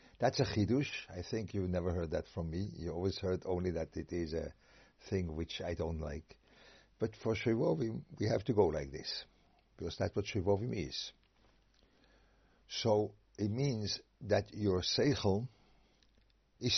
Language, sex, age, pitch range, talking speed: English, male, 60-79, 90-110 Hz, 160 wpm